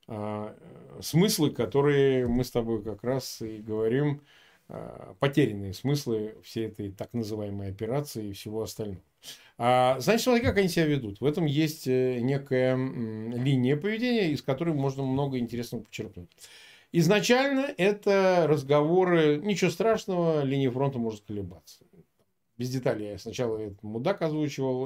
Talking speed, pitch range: 125 wpm, 115-165 Hz